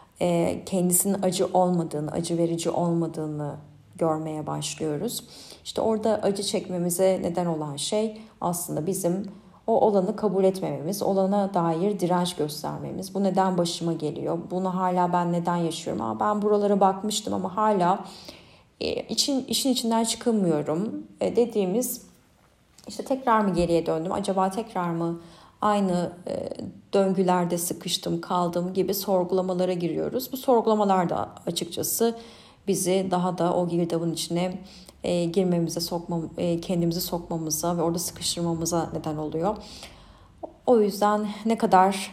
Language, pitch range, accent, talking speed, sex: Turkish, 170-200 Hz, native, 125 wpm, female